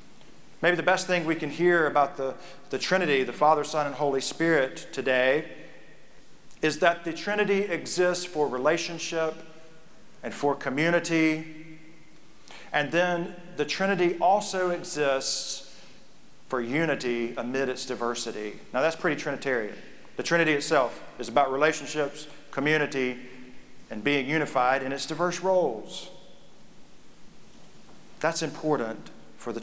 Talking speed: 125 wpm